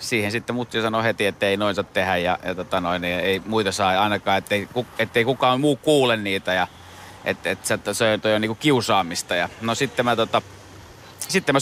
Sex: male